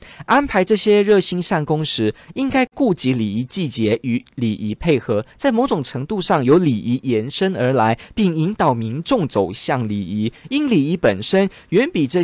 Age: 20-39